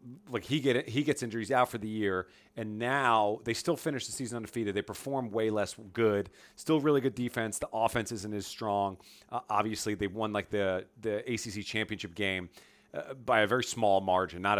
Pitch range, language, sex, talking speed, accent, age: 100-120 Hz, English, male, 200 wpm, American, 40-59